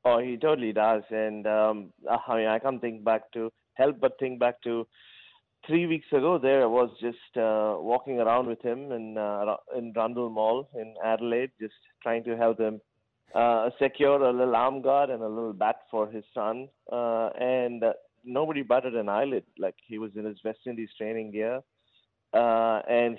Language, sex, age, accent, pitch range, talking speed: English, male, 30-49, Indian, 110-125 Hz, 185 wpm